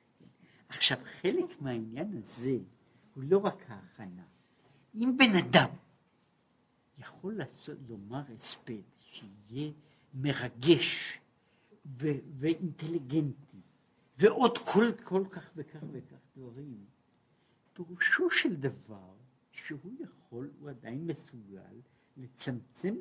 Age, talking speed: 60-79, 95 wpm